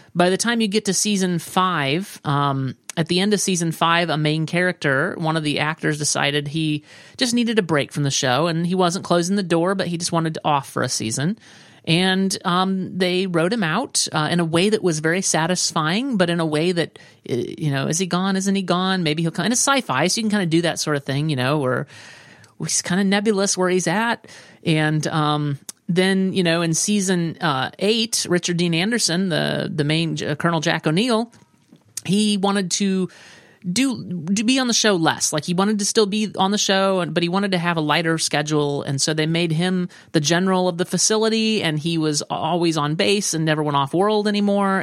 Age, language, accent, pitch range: 30-49, English, American, 160-205 Hz